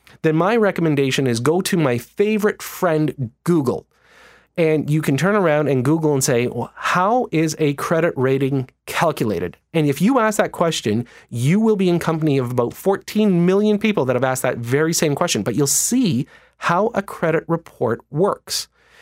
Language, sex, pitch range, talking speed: English, male, 130-170 Hz, 175 wpm